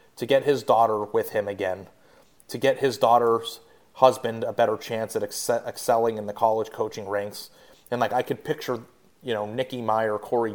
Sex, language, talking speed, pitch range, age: male, English, 180 wpm, 110-130 Hz, 30-49